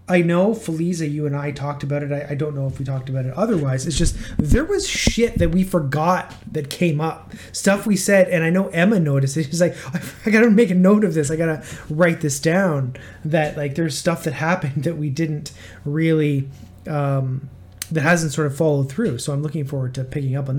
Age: 20-39